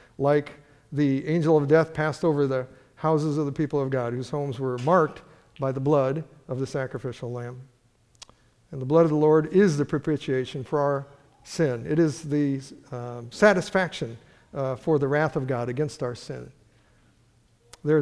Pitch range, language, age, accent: 130-160 Hz, English, 50-69, American